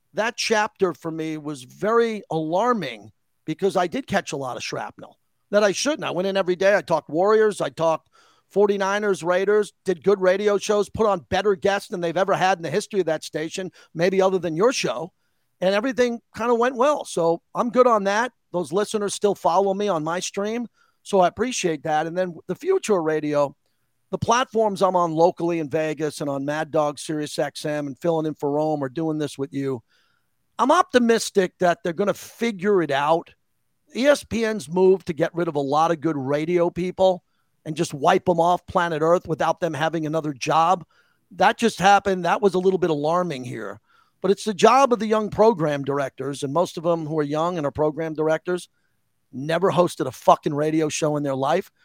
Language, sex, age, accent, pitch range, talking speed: English, male, 40-59, American, 160-200 Hz, 205 wpm